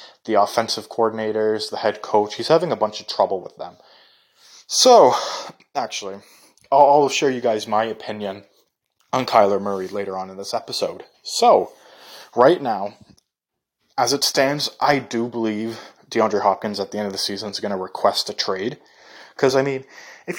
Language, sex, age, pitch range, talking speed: English, male, 20-39, 100-140 Hz, 170 wpm